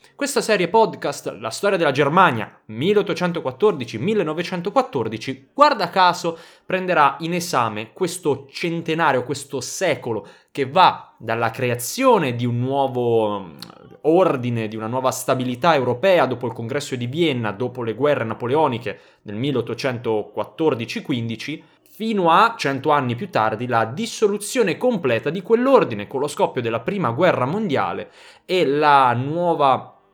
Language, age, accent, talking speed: Italian, 20-39, native, 125 wpm